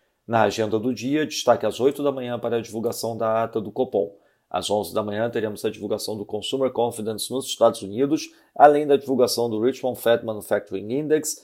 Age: 40-59